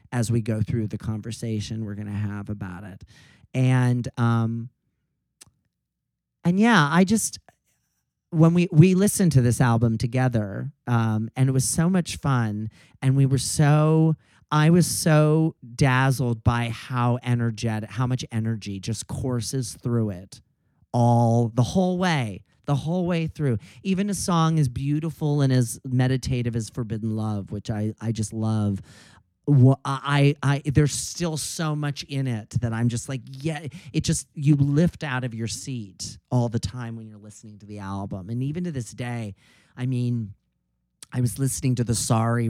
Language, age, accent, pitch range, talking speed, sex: English, 40-59, American, 110-145 Hz, 170 wpm, male